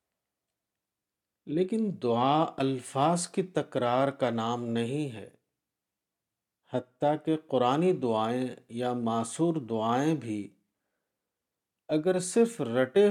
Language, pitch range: Urdu, 115-160 Hz